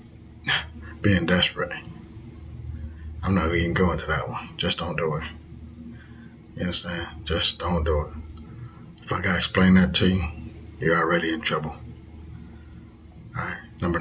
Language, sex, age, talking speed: English, male, 40-59, 135 wpm